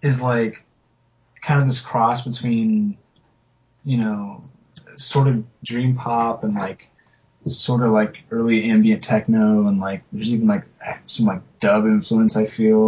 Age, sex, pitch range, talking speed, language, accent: 20-39, male, 110-185 Hz, 150 wpm, English, American